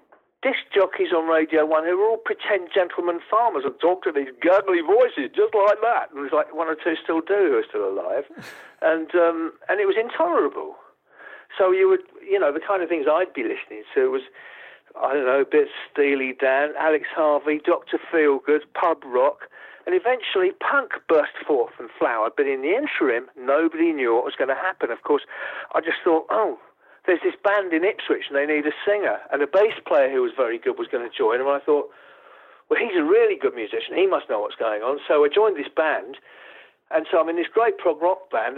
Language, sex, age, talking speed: English, male, 50-69, 220 wpm